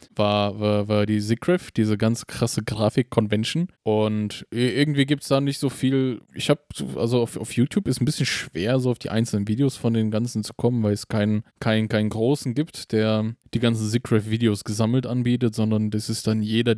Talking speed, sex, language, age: 205 wpm, male, German, 20-39